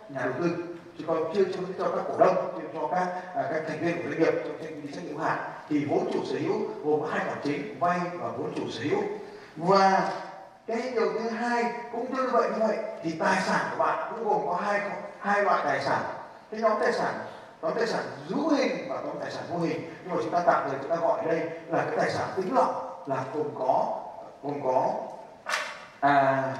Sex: male